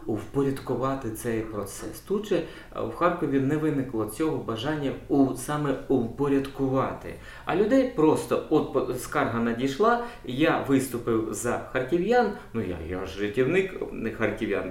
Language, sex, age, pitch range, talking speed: Ukrainian, male, 20-39, 115-160 Hz, 125 wpm